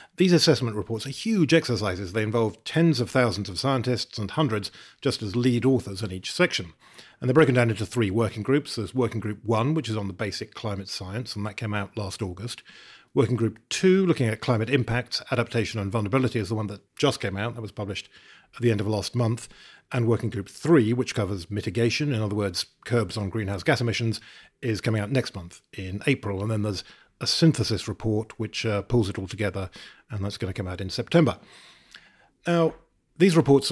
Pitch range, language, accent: 100-130 Hz, English, British